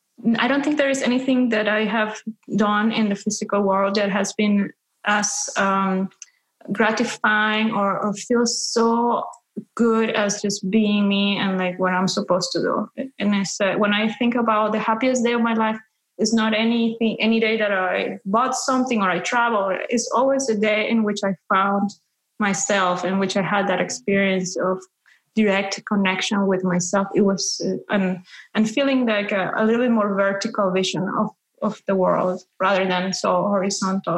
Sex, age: female, 20-39